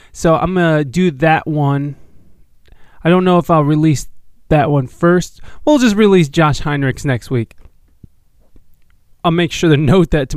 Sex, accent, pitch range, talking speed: male, American, 135-185 Hz, 170 wpm